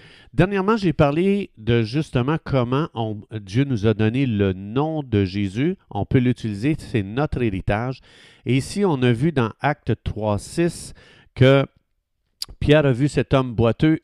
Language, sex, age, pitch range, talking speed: French, male, 50-69, 105-145 Hz, 155 wpm